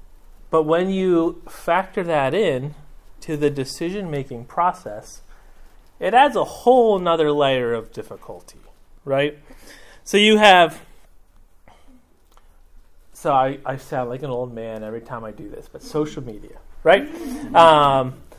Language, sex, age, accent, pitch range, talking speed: English, male, 30-49, American, 125-195 Hz, 135 wpm